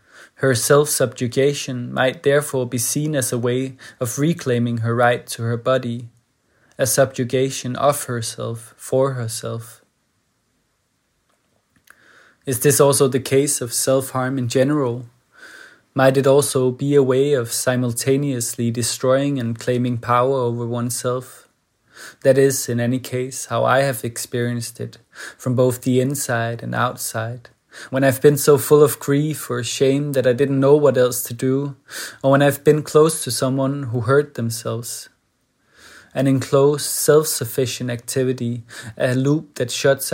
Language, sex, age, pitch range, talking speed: English, male, 20-39, 120-135 Hz, 145 wpm